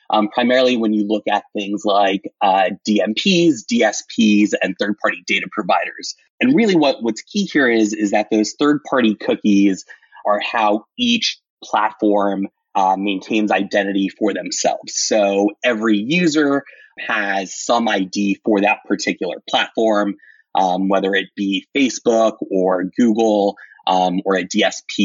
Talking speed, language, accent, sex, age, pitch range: 135 wpm, English, American, male, 30-49, 100-115 Hz